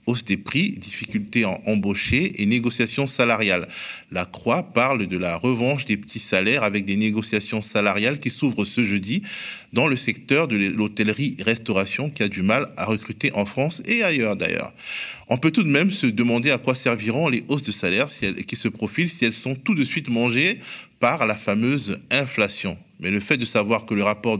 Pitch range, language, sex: 100-130 Hz, French, male